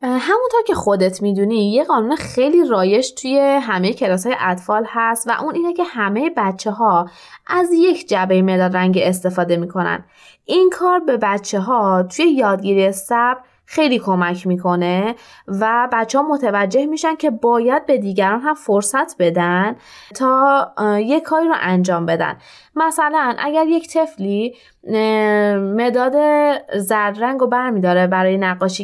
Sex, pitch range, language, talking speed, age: female, 195-295 Hz, Persian, 140 wpm, 20-39